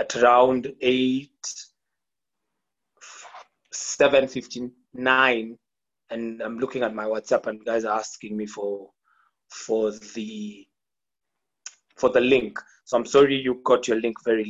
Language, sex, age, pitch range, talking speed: English, male, 20-39, 115-140 Hz, 125 wpm